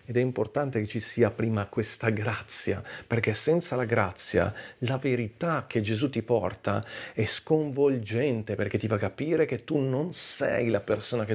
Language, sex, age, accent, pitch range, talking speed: Italian, male, 40-59, native, 105-125 Hz, 170 wpm